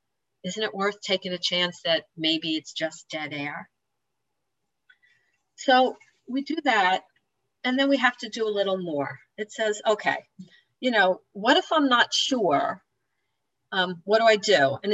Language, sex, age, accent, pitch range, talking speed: English, female, 50-69, American, 175-225 Hz, 165 wpm